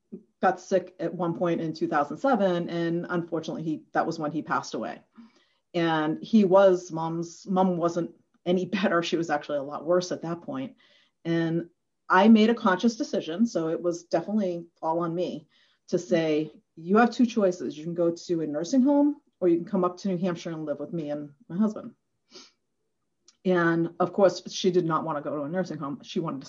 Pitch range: 155-195 Hz